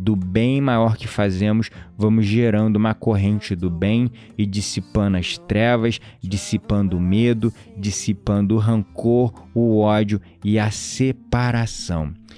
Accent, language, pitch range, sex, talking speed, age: Brazilian, Portuguese, 105-125 Hz, male, 125 wpm, 20-39